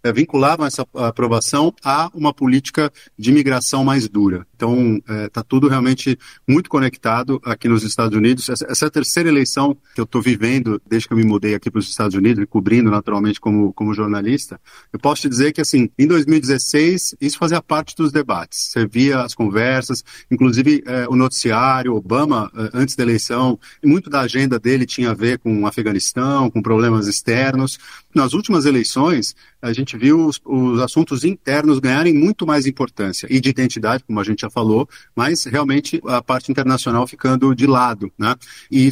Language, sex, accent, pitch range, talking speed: Portuguese, male, Brazilian, 115-145 Hz, 180 wpm